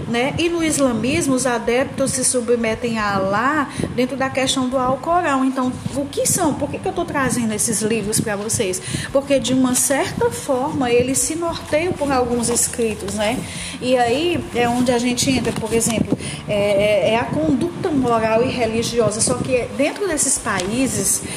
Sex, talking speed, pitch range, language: female, 175 wpm, 220-270 Hz, Portuguese